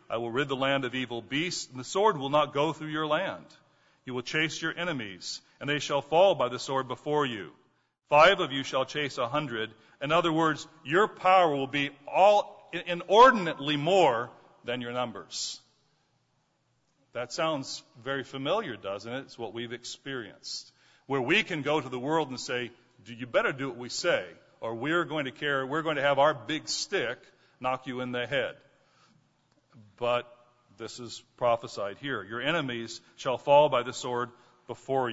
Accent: American